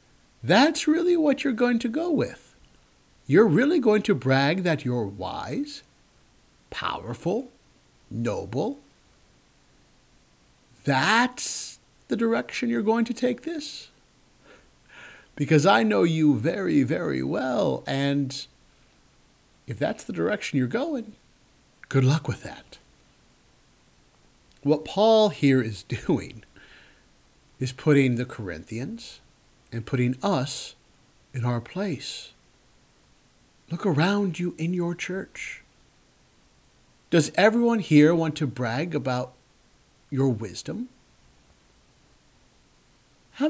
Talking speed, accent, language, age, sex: 105 wpm, American, English, 50-69, male